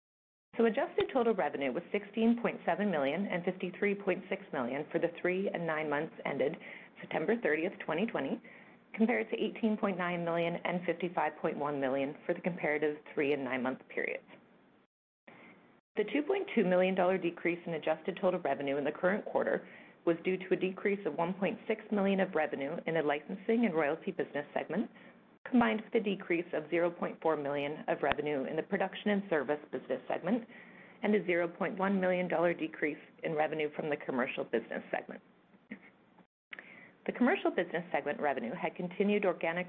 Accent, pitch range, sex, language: American, 160-205 Hz, female, English